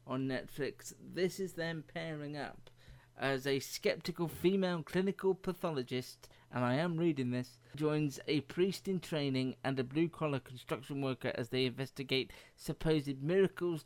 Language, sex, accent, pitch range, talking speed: English, male, British, 125-155 Hz, 145 wpm